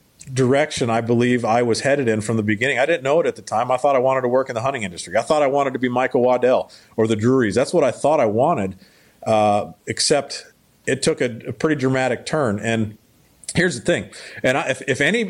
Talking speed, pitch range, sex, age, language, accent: 245 wpm, 110-140 Hz, male, 40-59, English, American